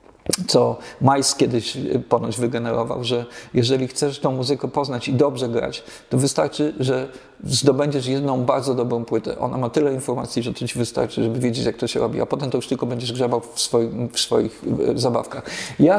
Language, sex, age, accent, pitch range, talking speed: Polish, male, 50-69, native, 125-150 Hz, 185 wpm